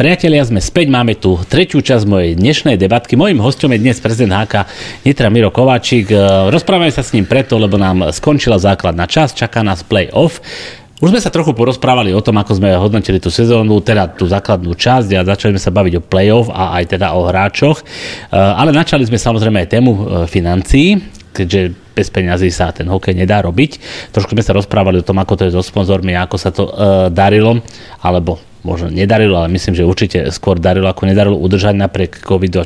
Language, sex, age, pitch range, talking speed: Slovak, male, 30-49, 95-115 Hz, 195 wpm